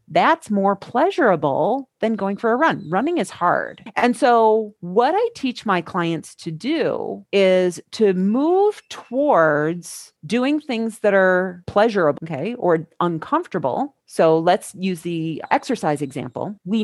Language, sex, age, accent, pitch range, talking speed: English, female, 40-59, American, 165-245 Hz, 140 wpm